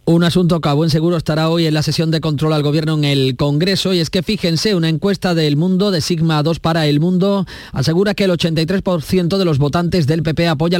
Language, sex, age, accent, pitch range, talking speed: Spanish, male, 30-49, Spanish, 145-180 Hz, 235 wpm